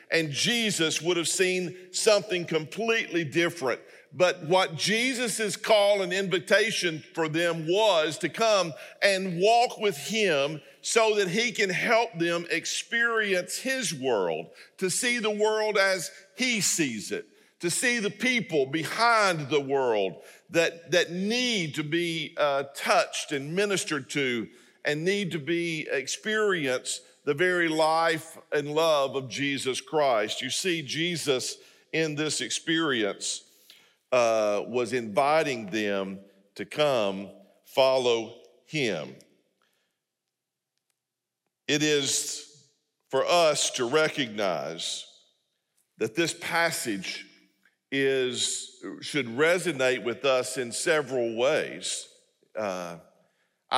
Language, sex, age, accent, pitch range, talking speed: English, male, 50-69, American, 140-200 Hz, 115 wpm